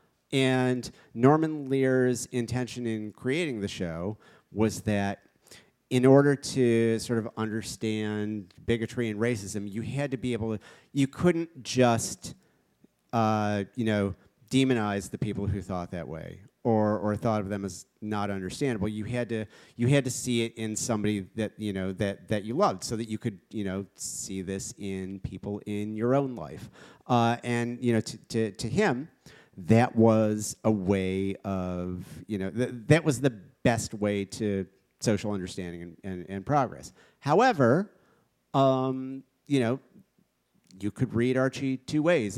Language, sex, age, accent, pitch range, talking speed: English, male, 40-59, American, 100-125 Hz, 165 wpm